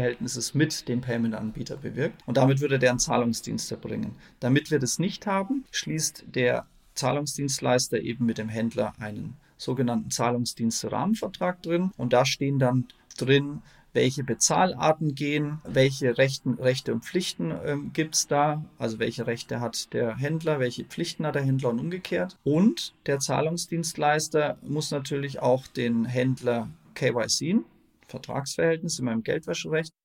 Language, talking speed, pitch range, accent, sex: German, 140 wpm, 125-150 Hz, German, male